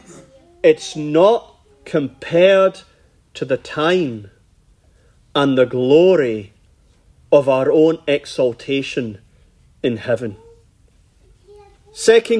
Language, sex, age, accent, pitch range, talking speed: English, male, 40-59, British, 125-205 Hz, 75 wpm